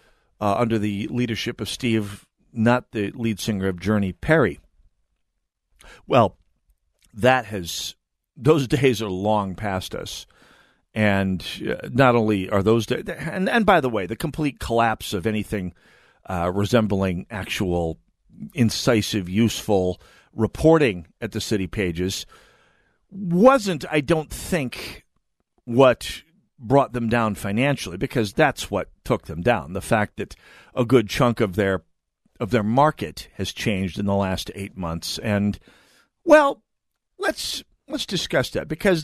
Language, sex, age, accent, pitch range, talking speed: English, male, 50-69, American, 95-130 Hz, 135 wpm